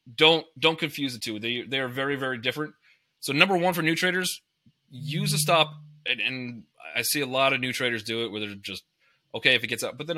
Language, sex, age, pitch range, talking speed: English, male, 30-49, 125-160 Hz, 240 wpm